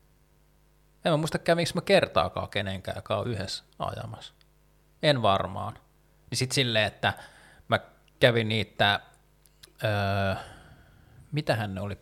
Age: 20-39